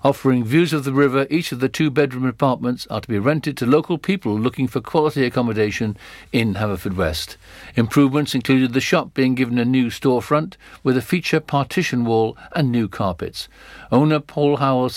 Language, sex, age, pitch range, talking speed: English, male, 60-79, 115-140 Hz, 180 wpm